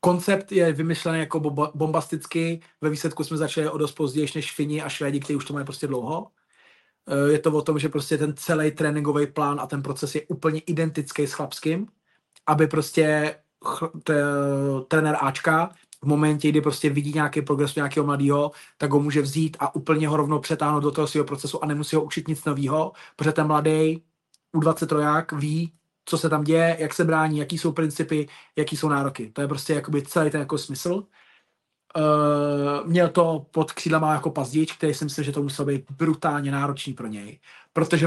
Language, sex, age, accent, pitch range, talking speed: Czech, male, 30-49, native, 145-160 Hz, 185 wpm